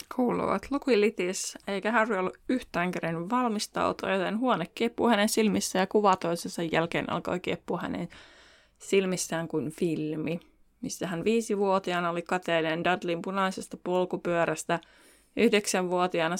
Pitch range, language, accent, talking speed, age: 180-225 Hz, Finnish, native, 110 wpm, 20-39